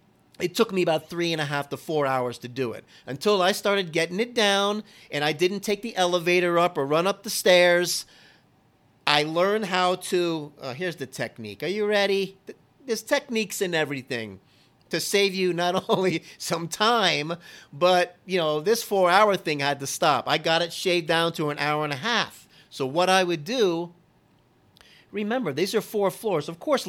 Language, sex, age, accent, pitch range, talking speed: English, male, 40-59, American, 155-195 Hz, 195 wpm